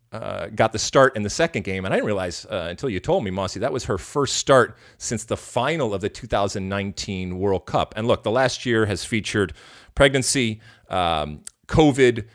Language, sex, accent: English, male, American